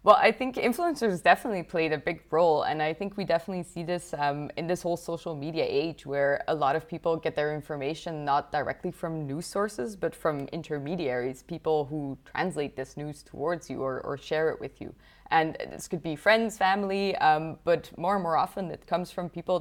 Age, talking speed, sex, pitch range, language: 20-39, 210 wpm, female, 150-190 Hz, English